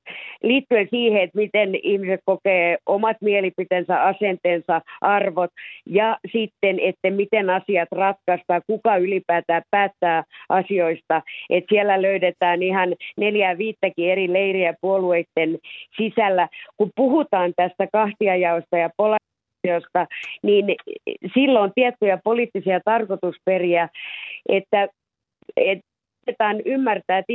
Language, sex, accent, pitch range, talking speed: Finnish, female, native, 175-215 Hz, 100 wpm